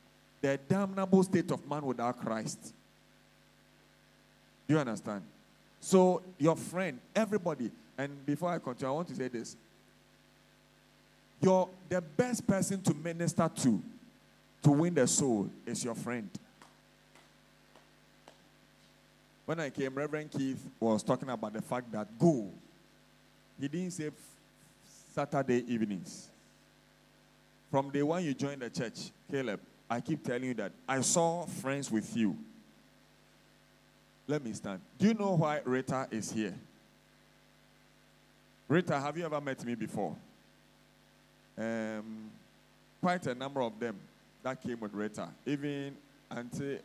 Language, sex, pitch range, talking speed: English, male, 115-160 Hz, 130 wpm